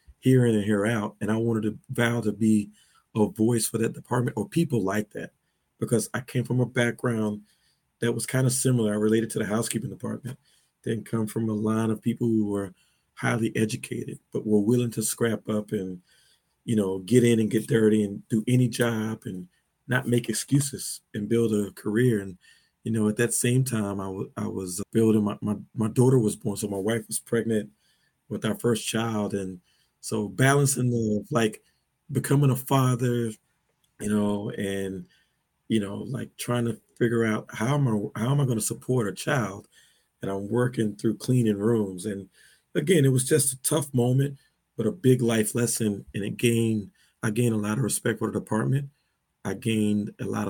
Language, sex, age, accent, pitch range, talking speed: English, male, 40-59, American, 105-125 Hz, 195 wpm